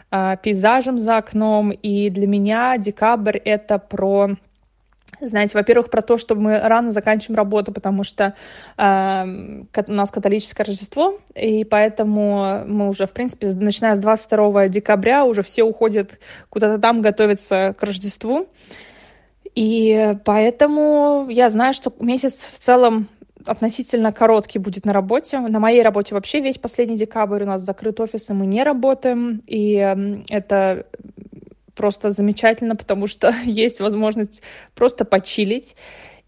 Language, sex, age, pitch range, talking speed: Russian, female, 20-39, 205-235 Hz, 135 wpm